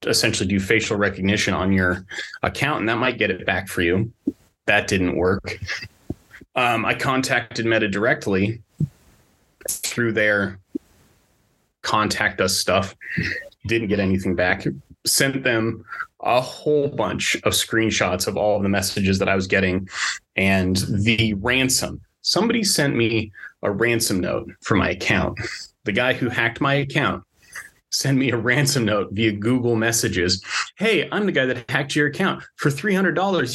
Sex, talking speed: male, 150 wpm